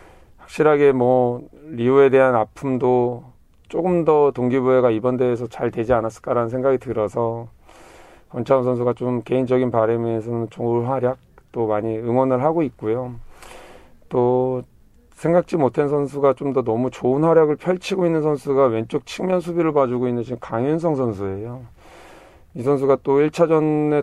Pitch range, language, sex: 120-155 Hz, Korean, male